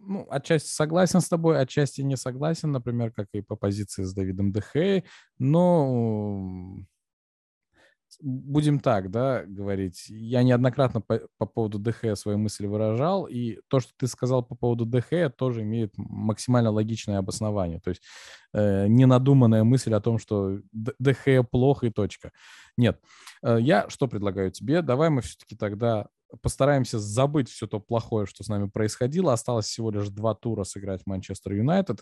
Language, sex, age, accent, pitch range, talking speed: Russian, male, 20-39, native, 100-130 Hz, 155 wpm